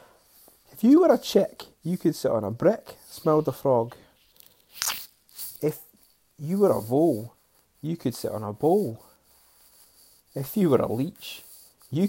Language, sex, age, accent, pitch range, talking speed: English, male, 30-49, British, 120-170 Hz, 155 wpm